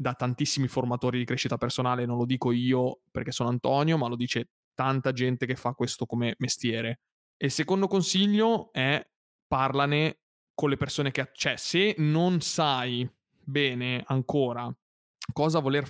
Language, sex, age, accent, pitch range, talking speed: Italian, male, 20-39, native, 125-155 Hz, 155 wpm